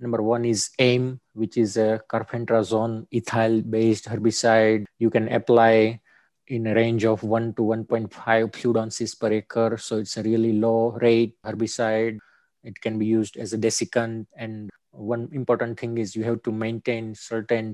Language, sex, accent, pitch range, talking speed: English, male, Indian, 110-115 Hz, 160 wpm